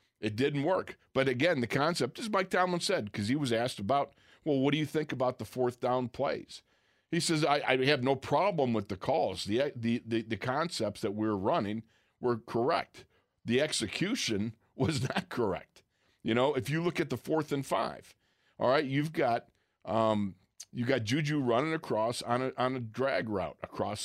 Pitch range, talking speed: 115-145 Hz, 195 wpm